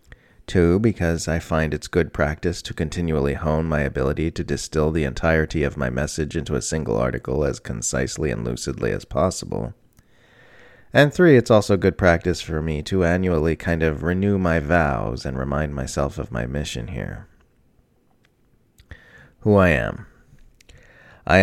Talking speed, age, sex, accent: 155 wpm, 30-49, male, American